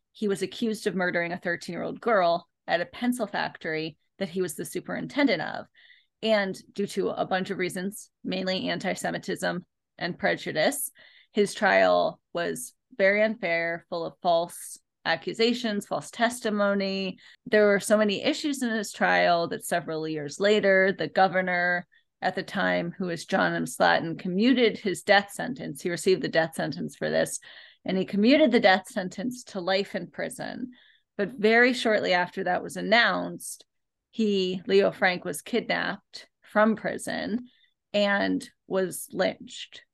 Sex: female